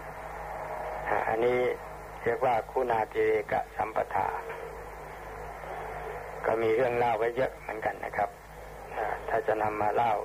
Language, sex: Thai, male